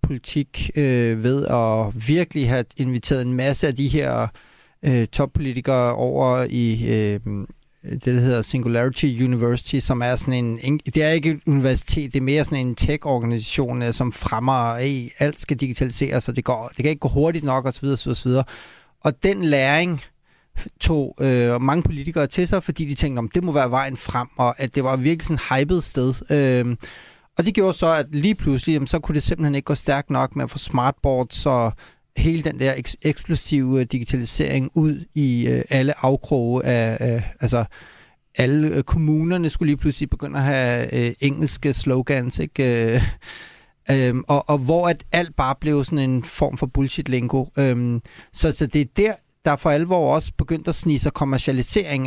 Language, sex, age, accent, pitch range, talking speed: Danish, male, 30-49, native, 125-150 Hz, 180 wpm